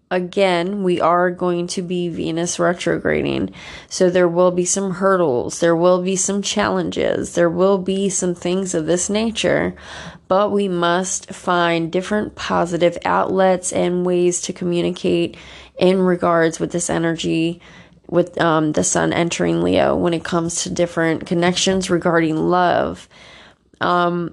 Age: 20-39